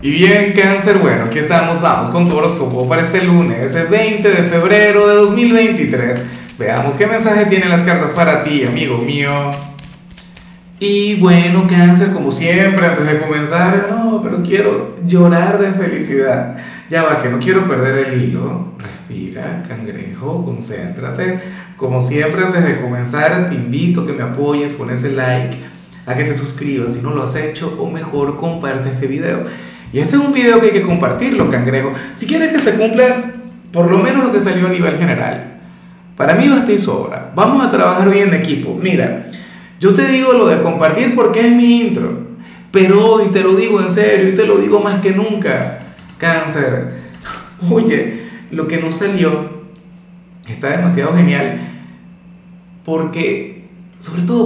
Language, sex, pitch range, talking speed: Spanish, male, 145-200 Hz, 170 wpm